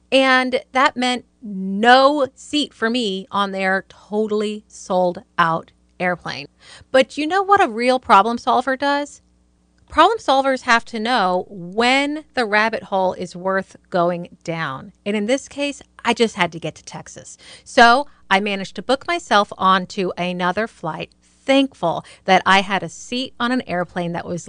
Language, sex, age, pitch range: English, female, 40-59, 180-255 Hz